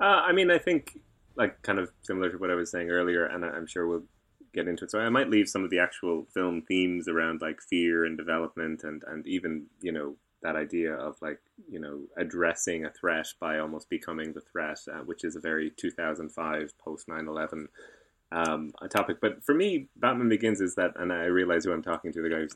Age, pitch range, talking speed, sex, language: 20-39, 80-100 Hz, 220 wpm, male, English